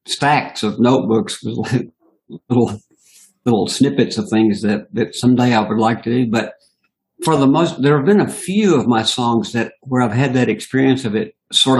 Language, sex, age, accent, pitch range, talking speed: English, male, 60-79, American, 110-130 Hz, 195 wpm